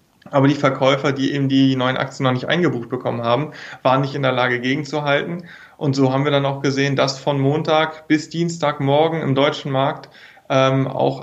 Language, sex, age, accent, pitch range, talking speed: German, male, 30-49, German, 130-150 Hz, 190 wpm